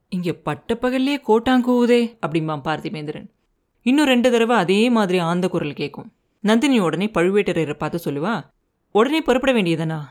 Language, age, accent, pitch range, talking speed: Tamil, 30-49, native, 170-230 Hz, 130 wpm